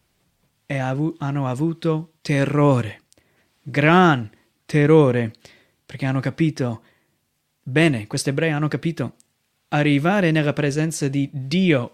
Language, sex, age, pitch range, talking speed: Italian, male, 30-49, 140-165 Hz, 95 wpm